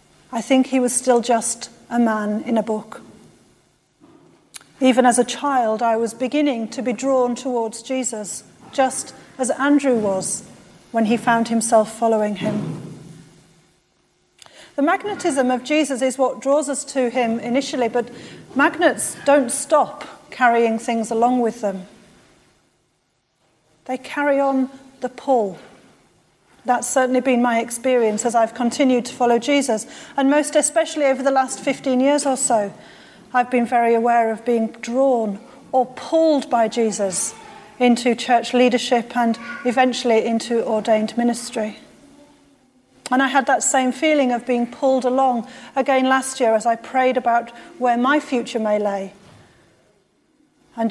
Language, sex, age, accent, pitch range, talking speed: English, female, 40-59, British, 230-265 Hz, 145 wpm